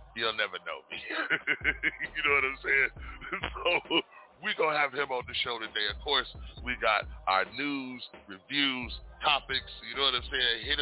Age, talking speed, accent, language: 40-59, 175 wpm, American, English